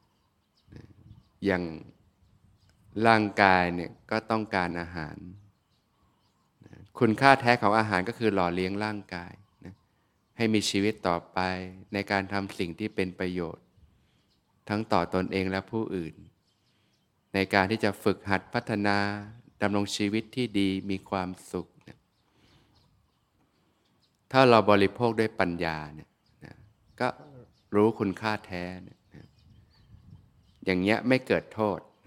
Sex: male